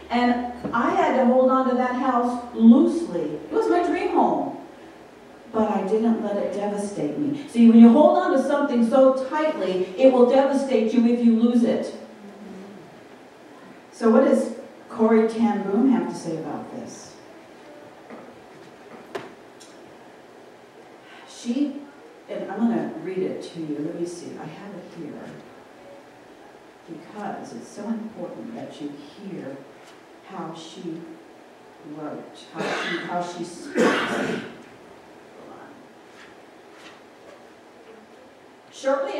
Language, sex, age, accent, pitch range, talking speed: English, female, 50-69, American, 205-265 Hz, 125 wpm